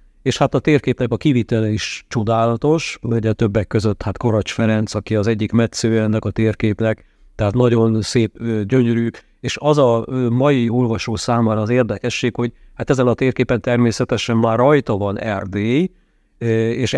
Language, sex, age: Hungarian, male, 50-69